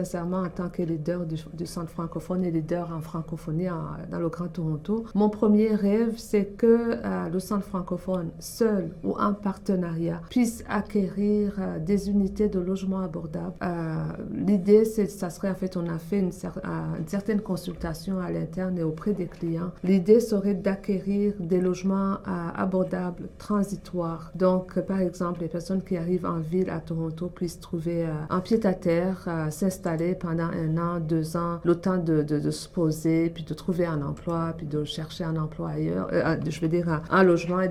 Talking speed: 190 wpm